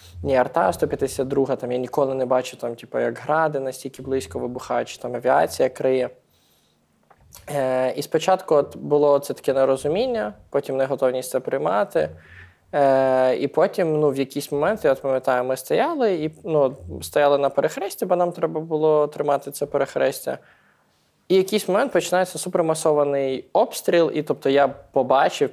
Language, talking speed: Ukrainian, 160 wpm